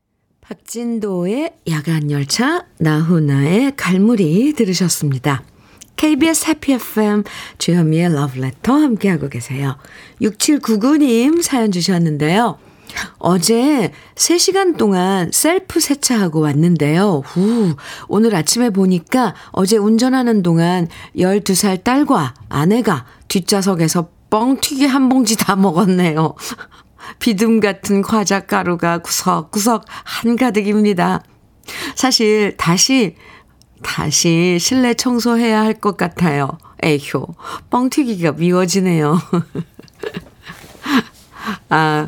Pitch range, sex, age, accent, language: 155-230 Hz, female, 50-69, native, Korean